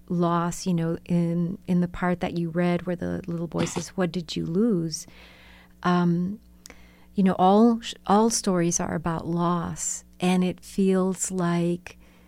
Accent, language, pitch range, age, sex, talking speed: American, English, 160-185 Hz, 40-59, female, 160 wpm